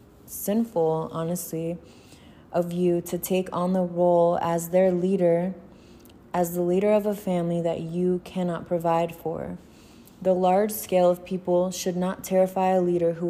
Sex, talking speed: female, 155 wpm